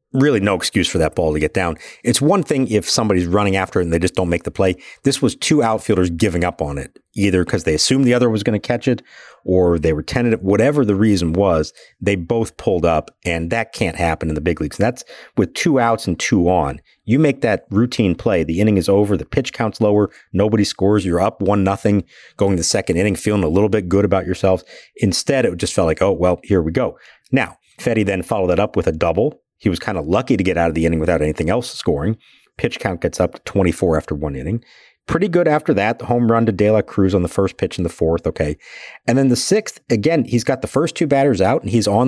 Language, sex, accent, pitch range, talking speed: English, male, American, 90-120 Hz, 255 wpm